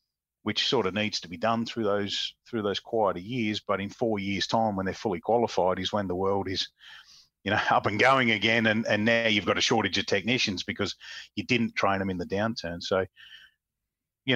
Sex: male